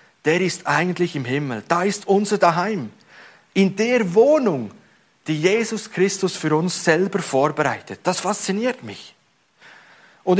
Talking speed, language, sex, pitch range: 135 wpm, German, male, 155-210 Hz